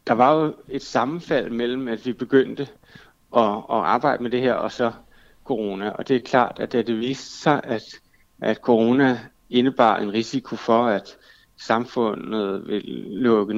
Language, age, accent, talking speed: Danish, 60-79, native, 170 wpm